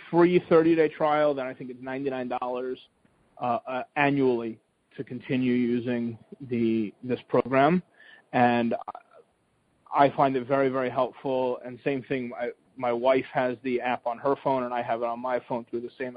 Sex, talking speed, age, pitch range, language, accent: male, 170 wpm, 30-49, 120-135 Hz, English, American